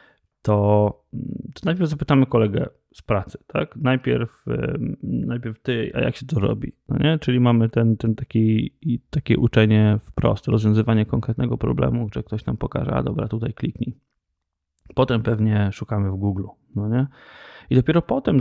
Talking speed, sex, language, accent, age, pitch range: 150 wpm, male, Polish, native, 20-39, 105-125 Hz